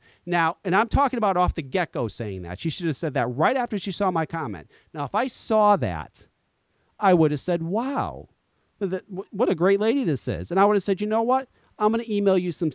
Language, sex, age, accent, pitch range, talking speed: English, male, 40-59, American, 145-220 Hz, 240 wpm